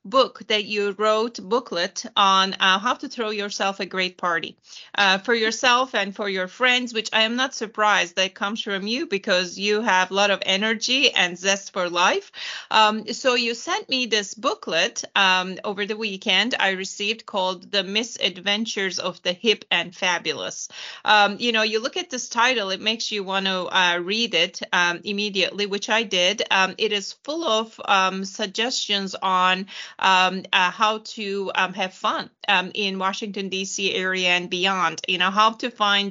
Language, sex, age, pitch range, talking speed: English, female, 30-49, 190-220 Hz, 185 wpm